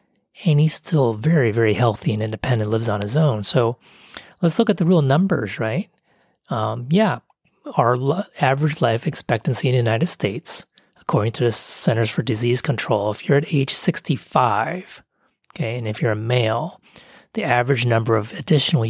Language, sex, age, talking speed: English, male, 30-49, 170 wpm